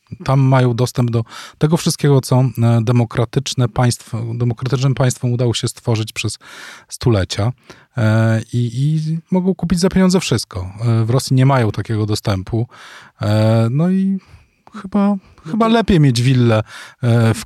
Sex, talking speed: male, 120 wpm